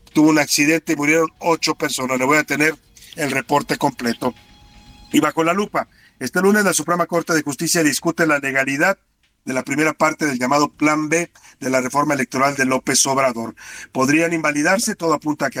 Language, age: Spanish, 50-69